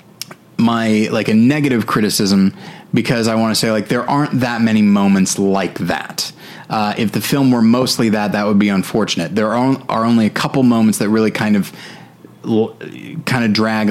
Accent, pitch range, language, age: American, 100-115 Hz, English, 30-49